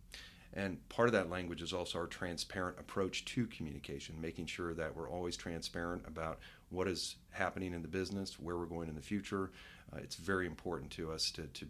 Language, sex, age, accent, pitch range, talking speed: English, male, 40-59, American, 80-90 Hz, 200 wpm